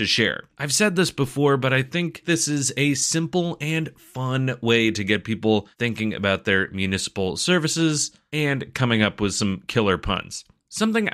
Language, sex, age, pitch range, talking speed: English, male, 30-49, 110-150 Hz, 175 wpm